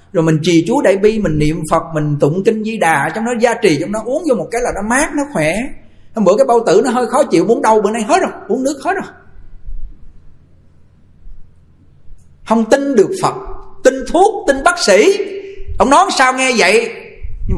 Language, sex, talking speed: Vietnamese, male, 220 wpm